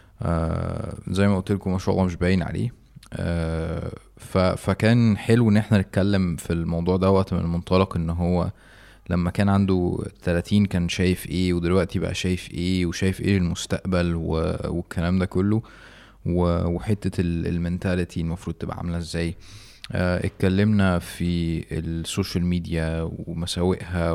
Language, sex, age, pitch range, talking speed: Arabic, male, 20-39, 85-100 Hz, 135 wpm